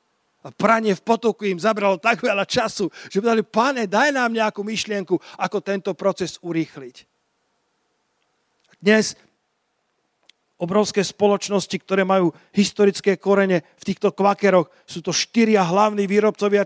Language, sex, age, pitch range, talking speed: Slovak, male, 40-59, 180-215 Hz, 125 wpm